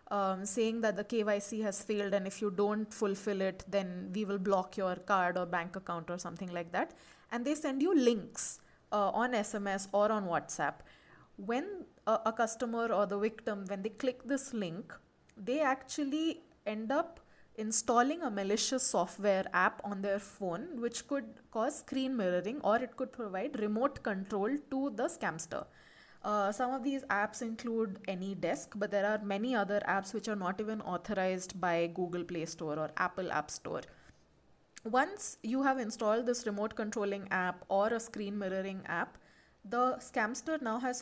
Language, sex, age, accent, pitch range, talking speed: Tamil, female, 20-39, native, 195-240 Hz, 175 wpm